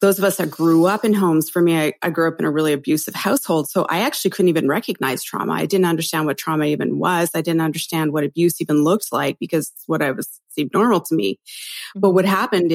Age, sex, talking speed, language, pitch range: 30-49, female, 245 wpm, English, 160-190 Hz